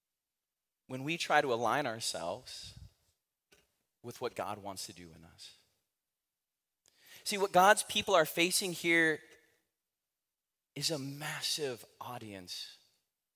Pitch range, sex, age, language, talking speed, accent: 150-235 Hz, male, 30-49, English, 110 wpm, American